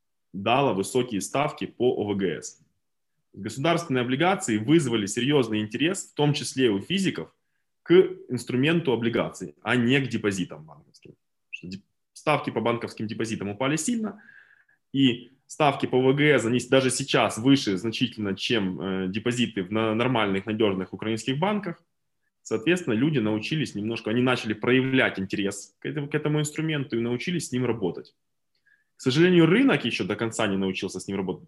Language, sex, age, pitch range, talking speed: Russian, male, 20-39, 105-135 Hz, 140 wpm